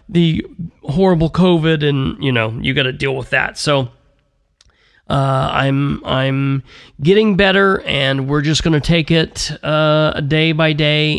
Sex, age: male, 40-59